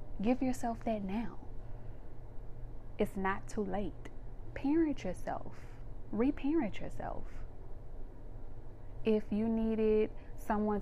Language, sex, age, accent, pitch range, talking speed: English, female, 20-39, American, 120-200 Hz, 90 wpm